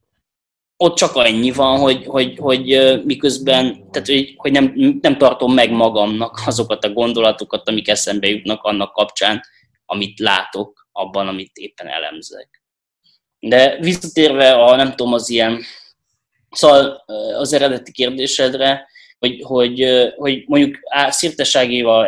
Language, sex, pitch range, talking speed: Hungarian, male, 110-140 Hz, 130 wpm